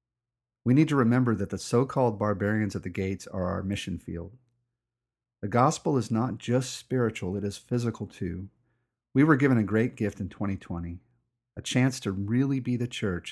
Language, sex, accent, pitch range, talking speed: English, male, American, 100-125 Hz, 180 wpm